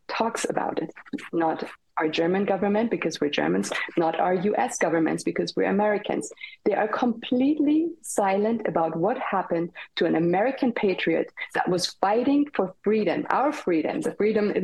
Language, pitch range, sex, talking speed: English, 165-215 Hz, female, 155 wpm